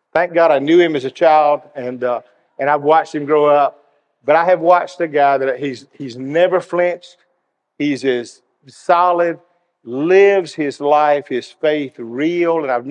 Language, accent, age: English, American, 50-69